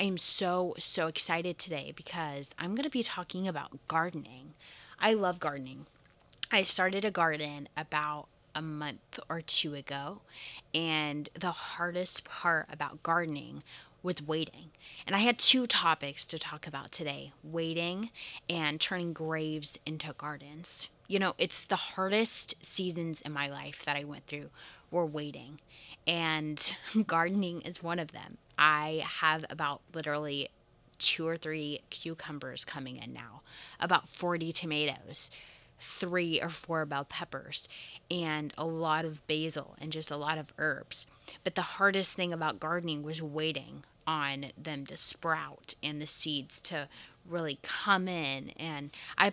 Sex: female